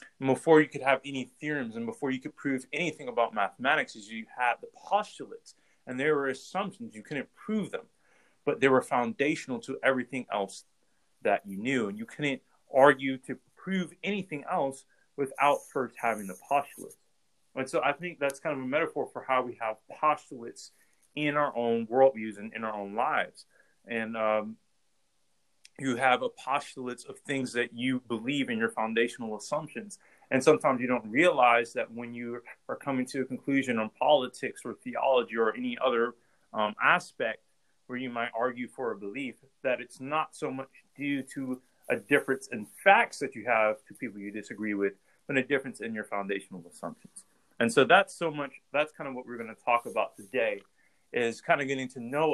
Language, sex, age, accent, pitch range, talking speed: English, male, 30-49, American, 115-145 Hz, 190 wpm